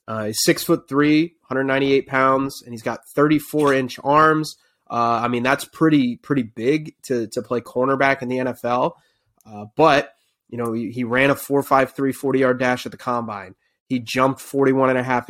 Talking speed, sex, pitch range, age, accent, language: 195 wpm, male, 120-140 Hz, 20-39, American, English